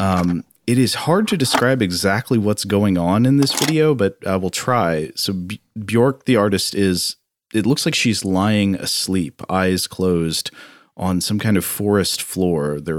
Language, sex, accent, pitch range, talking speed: English, male, American, 90-110 Hz, 175 wpm